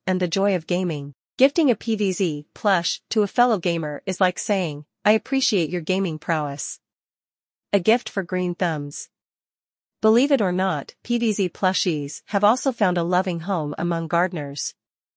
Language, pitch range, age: English, 165-200 Hz, 40-59